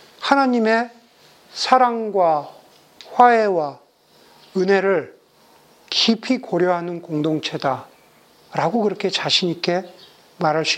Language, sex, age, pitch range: Korean, male, 40-59, 195-280 Hz